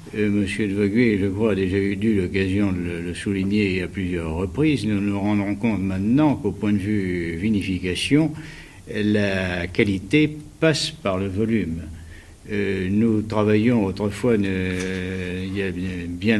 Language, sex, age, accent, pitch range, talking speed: French, male, 60-79, French, 95-110 Hz, 155 wpm